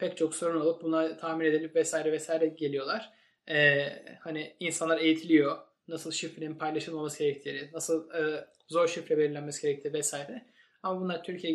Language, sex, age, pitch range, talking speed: Turkish, male, 20-39, 160-195 Hz, 145 wpm